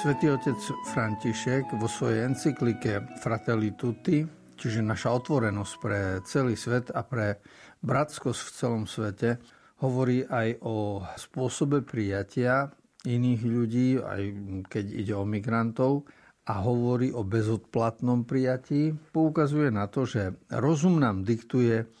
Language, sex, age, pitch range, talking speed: Slovak, male, 60-79, 110-130 Hz, 120 wpm